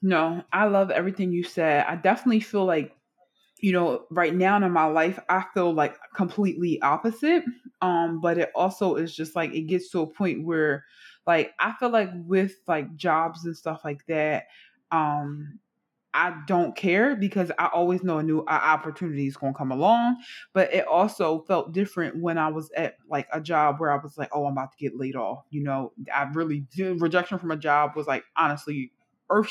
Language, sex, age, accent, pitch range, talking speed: English, female, 20-39, American, 150-185 Hz, 200 wpm